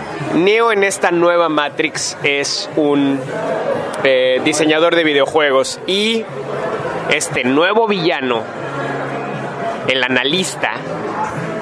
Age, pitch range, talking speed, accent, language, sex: 30-49, 145-175 Hz, 90 wpm, Mexican, English, male